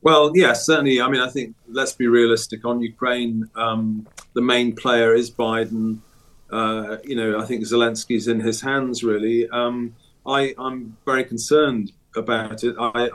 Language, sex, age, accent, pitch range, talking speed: English, male, 30-49, British, 115-130 Hz, 170 wpm